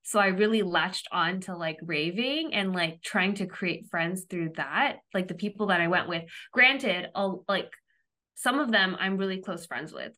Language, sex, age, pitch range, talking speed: English, female, 20-39, 180-215 Hz, 200 wpm